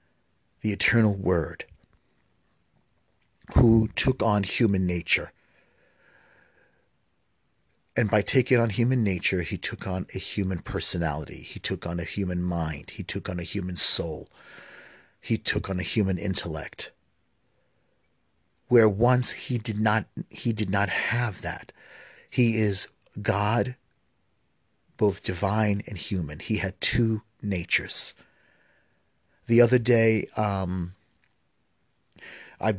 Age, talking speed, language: 40-59, 115 wpm, English